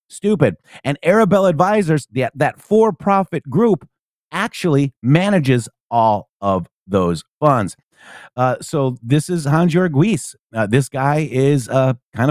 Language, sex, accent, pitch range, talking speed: English, male, American, 125-185 Hz, 130 wpm